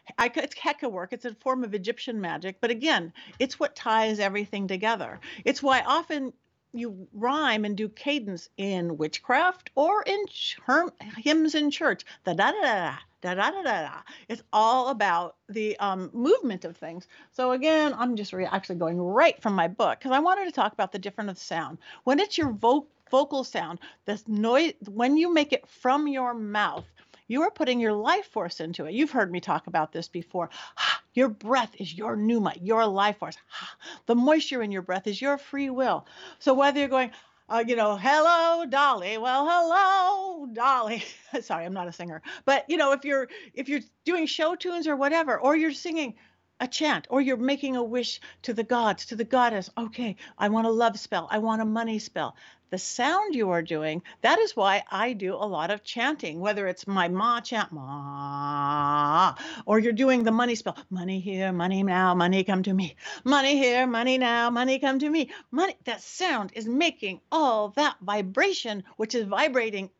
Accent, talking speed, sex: American, 195 wpm, female